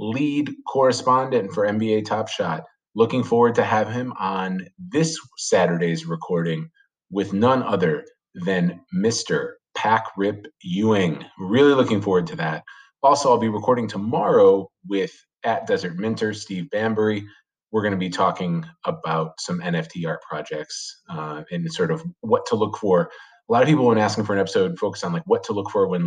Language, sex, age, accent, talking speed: English, male, 30-49, American, 170 wpm